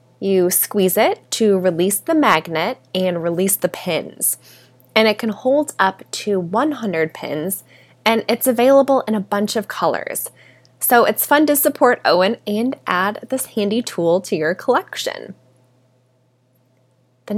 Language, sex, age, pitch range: English, female, 20-39, 175-240 Hz